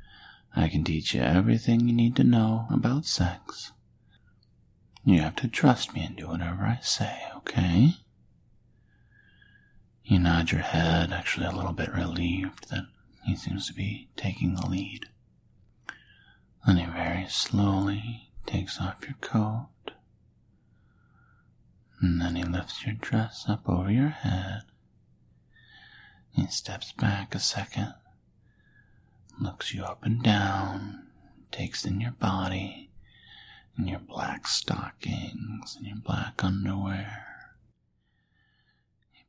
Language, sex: English, male